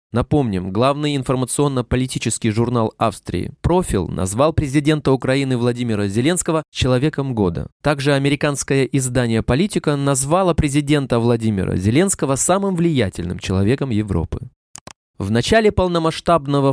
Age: 20-39